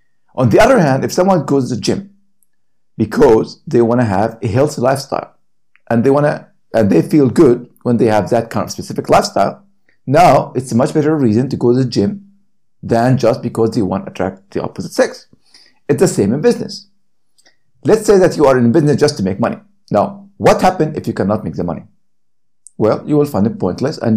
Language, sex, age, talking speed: English, male, 50-69, 215 wpm